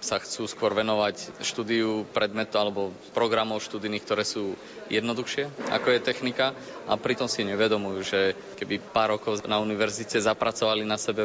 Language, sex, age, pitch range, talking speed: Slovak, male, 20-39, 105-110 Hz, 150 wpm